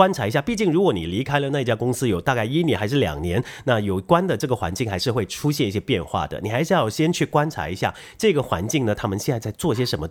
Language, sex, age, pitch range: Chinese, male, 30-49, 95-150 Hz